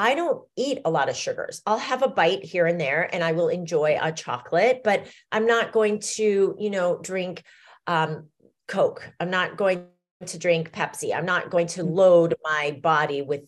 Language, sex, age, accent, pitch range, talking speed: English, female, 40-59, American, 155-205 Hz, 195 wpm